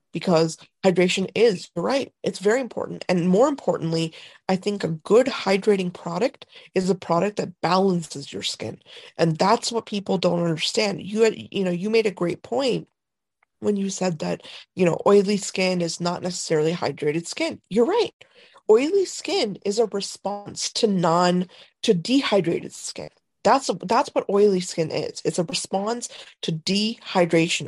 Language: English